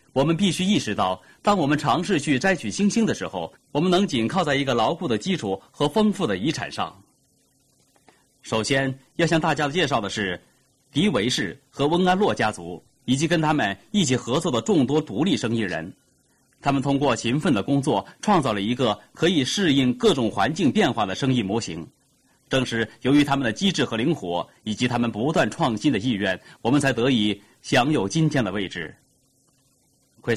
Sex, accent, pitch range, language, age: male, native, 115-160 Hz, Chinese, 30-49